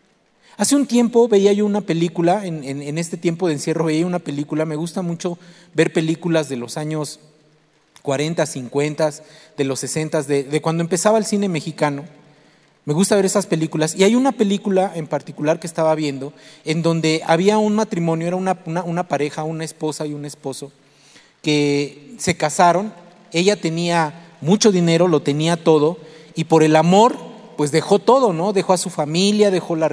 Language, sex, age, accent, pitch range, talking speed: Spanish, male, 40-59, Mexican, 155-200 Hz, 180 wpm